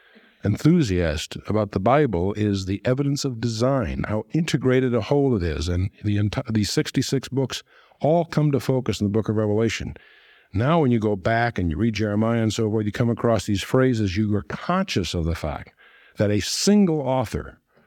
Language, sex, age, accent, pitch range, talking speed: English, male, 60-79, American, 105-150 Hz, 190 wpm